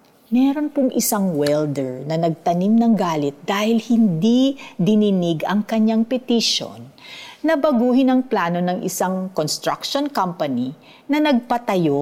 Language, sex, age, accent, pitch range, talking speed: Filipino, female, 50-69, native, 170-245 Hz, 120 wpm